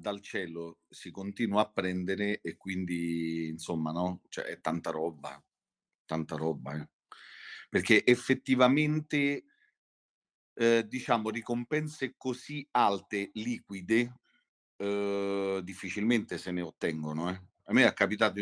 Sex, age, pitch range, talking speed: male, 40-59, 85-110 Hz, 115 wpm